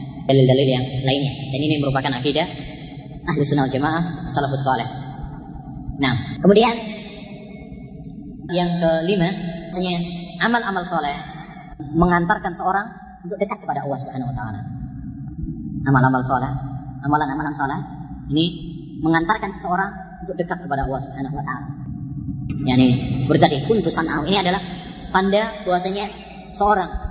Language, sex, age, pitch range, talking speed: Malay, male, 20-39, 135-180 Hz, 115 wpm